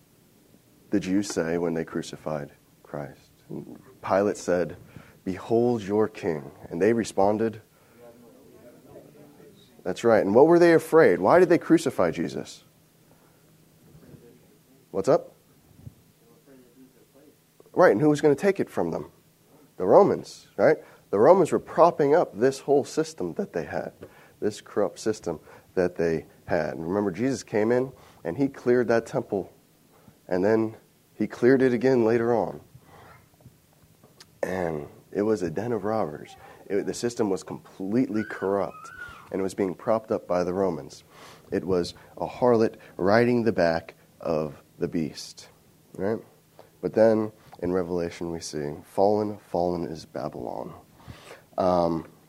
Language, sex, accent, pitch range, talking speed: English, male, American, 90-120 Hz, 140 wpm